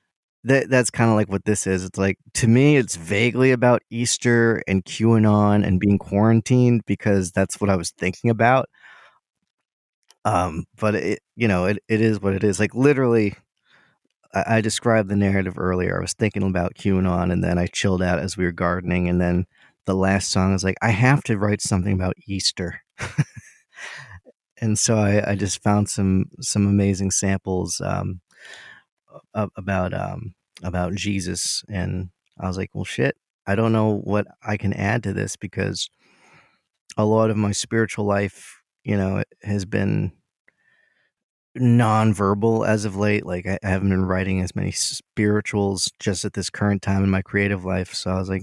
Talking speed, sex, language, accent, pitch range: 175 wpm, male, English, American, 95-110 Hz